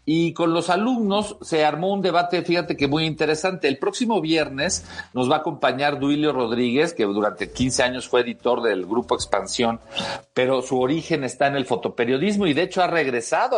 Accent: Mexican